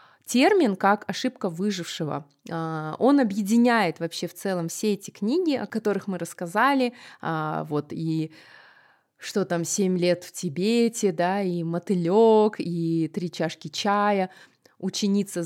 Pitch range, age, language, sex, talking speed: 175-245 Hz, 20-39, Russian, female, 125 wpm